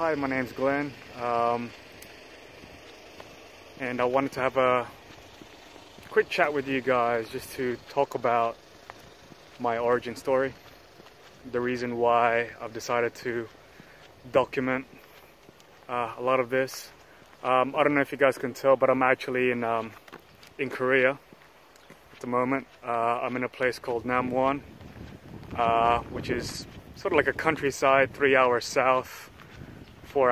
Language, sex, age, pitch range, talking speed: English, male, 20-39, 120-135 Hz, 145 wpm